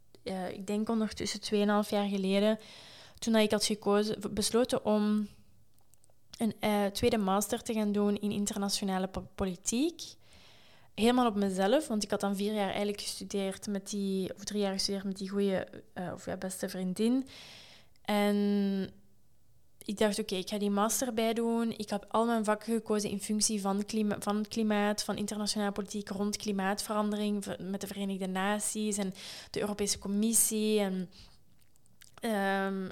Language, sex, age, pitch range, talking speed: Dutch, female, 20-39, 200-220 Hz, 160 wpm